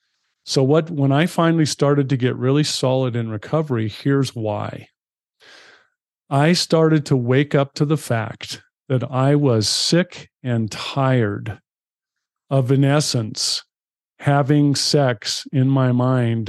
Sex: male